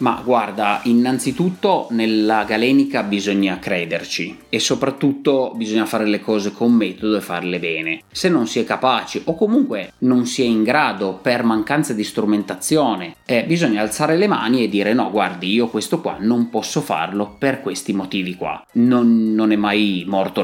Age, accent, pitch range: 30-49, native, 105-130 Hz